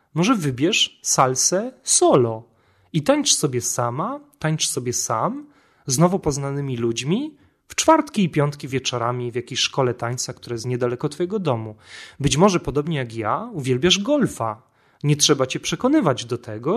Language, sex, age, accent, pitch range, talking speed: Polish, male, 30-49, native, 125-180 Hz, 150 wpm